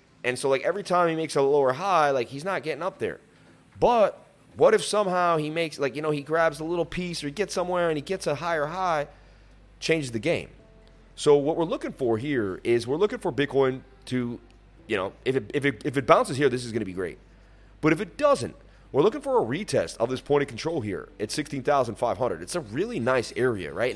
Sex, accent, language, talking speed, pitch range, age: male, American, English, 235 wpm, 105-160 Hz, 30-49